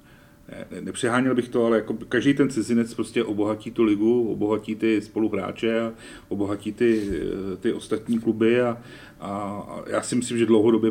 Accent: native